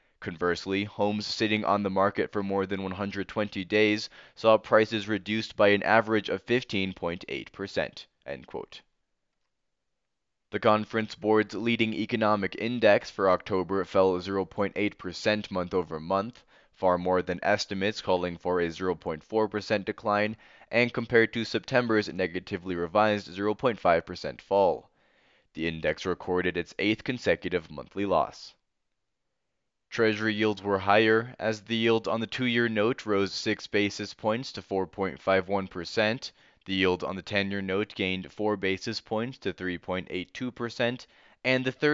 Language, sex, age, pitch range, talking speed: English, male, 20-39, 95-110 Hz, 130 wpm